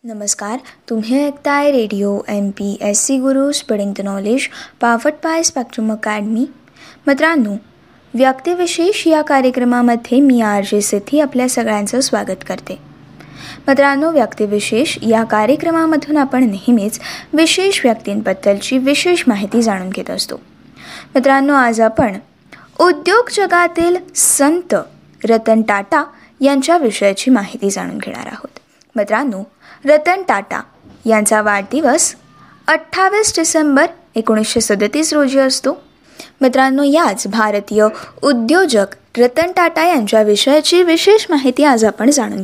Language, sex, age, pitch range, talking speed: Marathi, female, 20-39, 220-320 Hz, 110 wpm